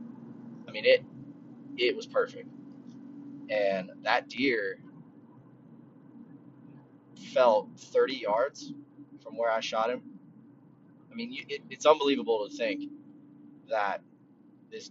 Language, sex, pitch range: English, male, 220-300 Hz